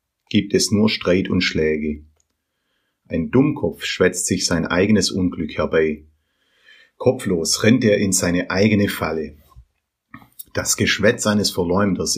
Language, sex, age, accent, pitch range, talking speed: German, male, 30-49, German, 80-110 Hz, 125 wpm